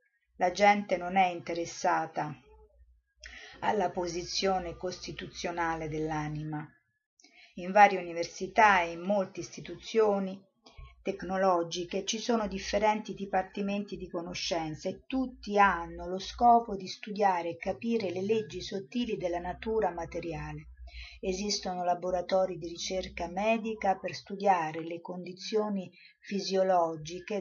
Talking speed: 105 wpm